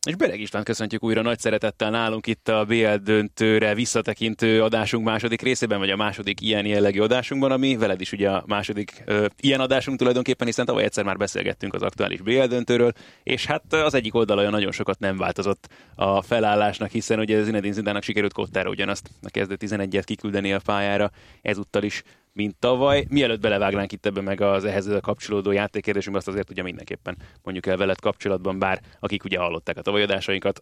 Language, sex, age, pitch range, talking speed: Hungarian, male, 20-39, 100-115 Hz, 180 wpm